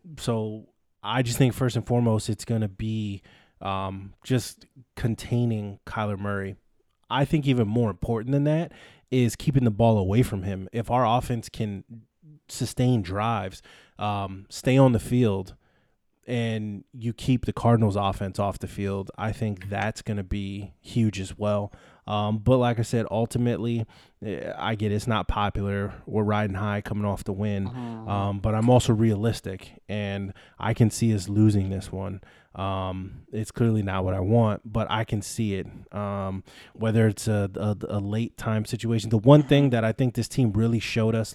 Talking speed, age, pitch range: 175 wpm, 20-39, 100-120 Hz